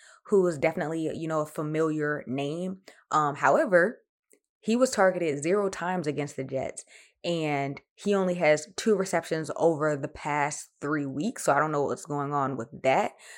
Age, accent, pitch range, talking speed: 20-39, American, 140-175 Hz, 170 wpm